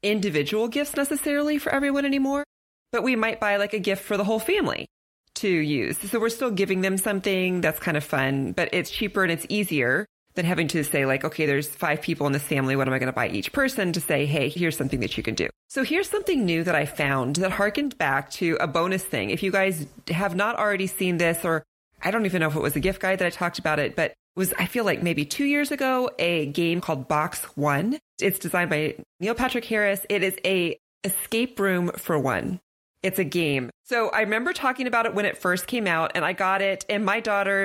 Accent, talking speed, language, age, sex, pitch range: American, 240 wpm, English, 30-49, female, 155-230 Hz